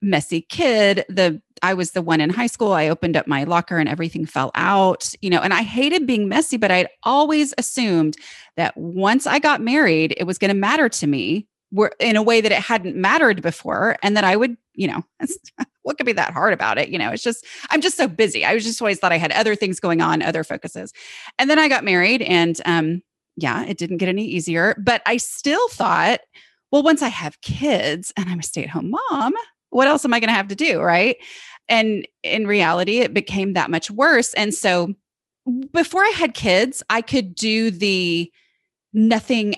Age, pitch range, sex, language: 30-49, 175-250 Hz, female, English